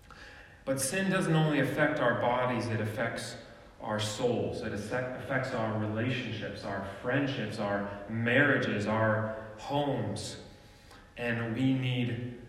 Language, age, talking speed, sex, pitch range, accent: English, 30-49, 115 wpm, male, 100-125 Hz, American